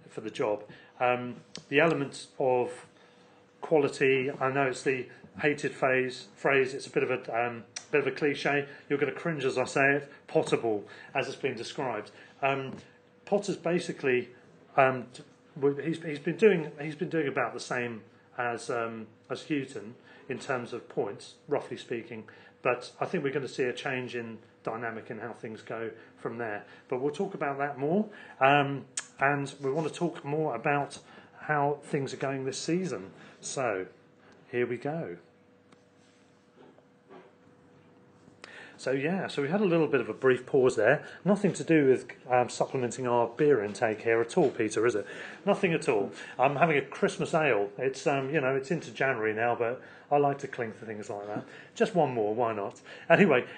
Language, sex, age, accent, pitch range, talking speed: English, male, 40-59, British, 125-160 Hz, 180 wpm